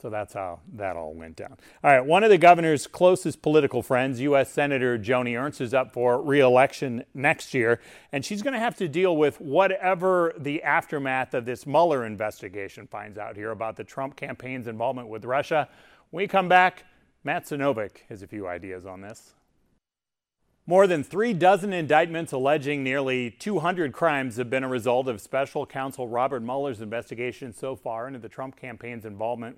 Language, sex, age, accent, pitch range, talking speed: English, male, 40-59, American, 125-160 Hz, 180 wpm